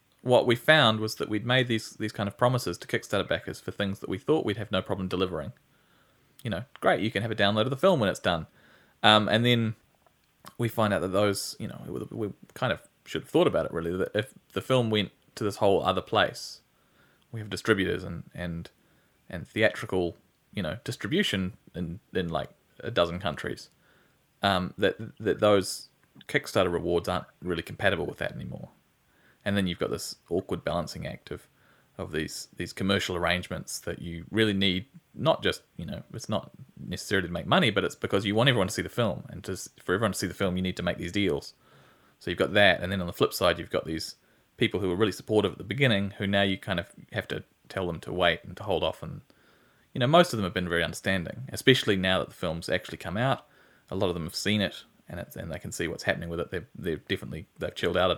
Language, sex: English, male